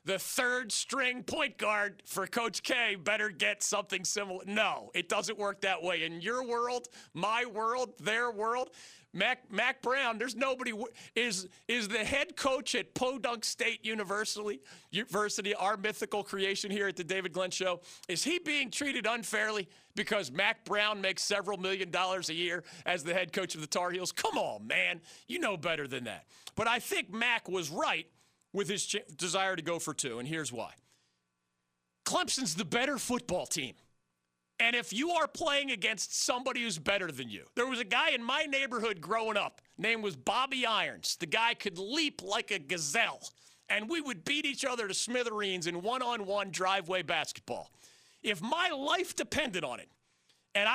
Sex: male